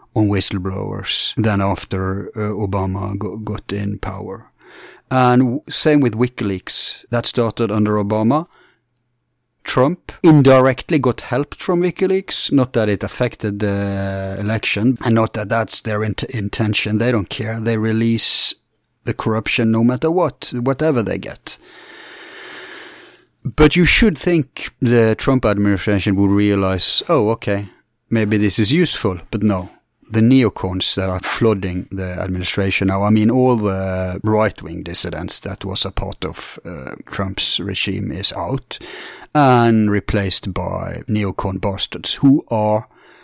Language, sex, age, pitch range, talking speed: English, male, 30-49, 100-120 Hz, 135 wpm